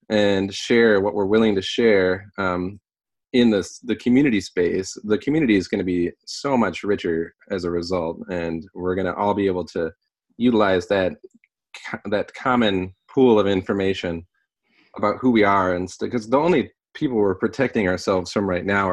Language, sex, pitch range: English, male, 90-105 Hz